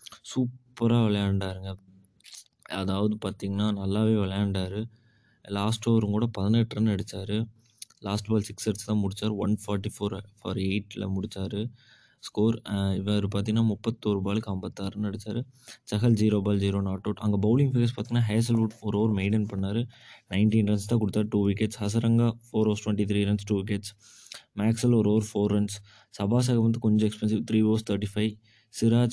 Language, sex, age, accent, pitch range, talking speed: Tamil, male, 20-39, native, 105-115 Hz, 150 wpm